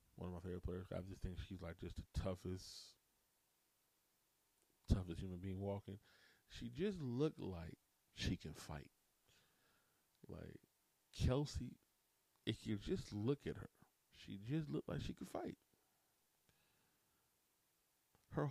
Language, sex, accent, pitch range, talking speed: English, male, American, 90-110 Hz, 130 wpm